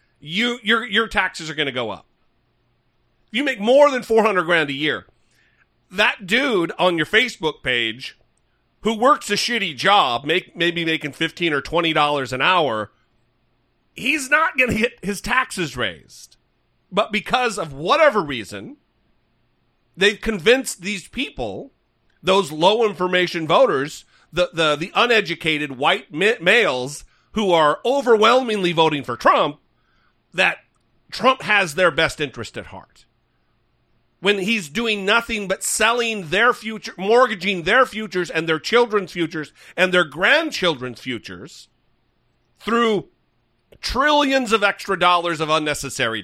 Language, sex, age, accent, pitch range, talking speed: English, male, 40-59, American, 150-225 Hz, 140 wpm